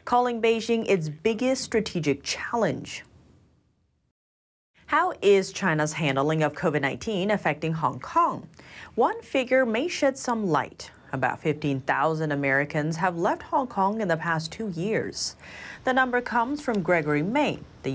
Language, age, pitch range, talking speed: English, 30-49, 155-240 Hz, 135 wpm